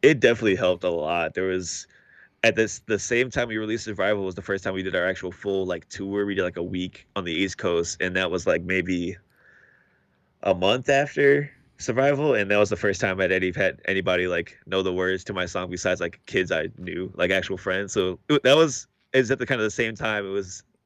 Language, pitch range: English, 95-105 Hz